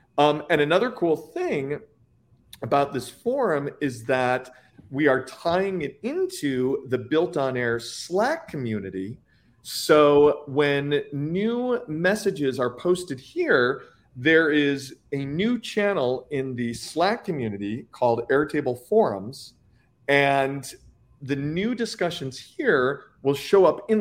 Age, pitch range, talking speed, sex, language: 40-59, 125-165 Hz, 115 wpm, male, English